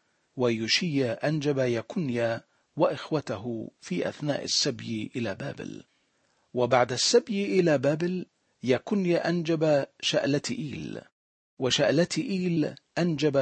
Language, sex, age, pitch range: Arabic, male, 50-69, 125-165 Hz